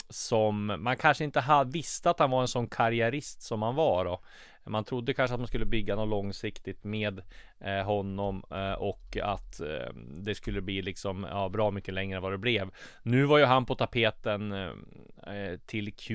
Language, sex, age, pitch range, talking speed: English, male, 20-39, 95-115 Hz, 165 wpm